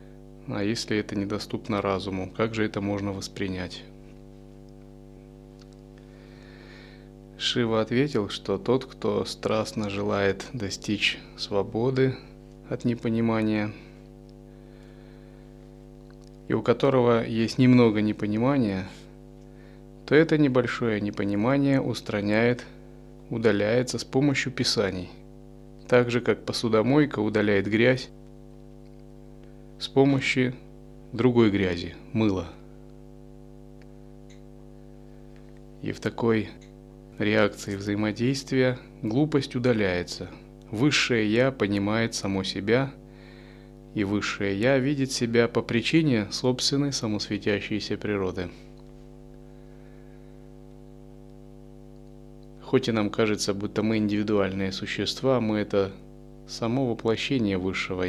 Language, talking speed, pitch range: Russian, 85 wpm, 85-120 Hz